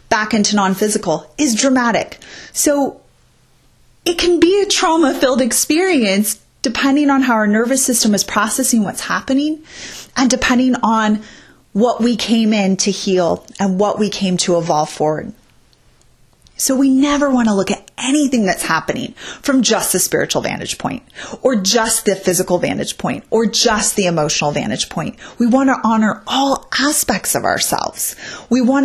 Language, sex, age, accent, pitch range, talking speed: English, female, 30-49, American, 190-255 Hz, 160 wpm